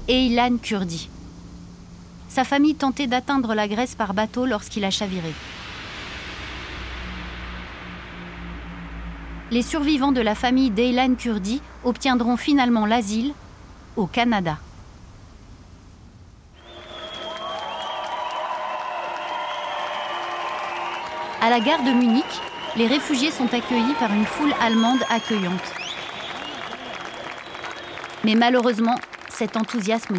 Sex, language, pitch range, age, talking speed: female, French, 185-265 Hz, 30-49, 85 wpm